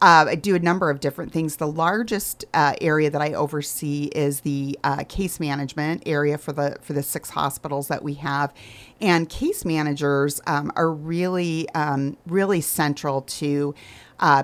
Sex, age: female, 40-59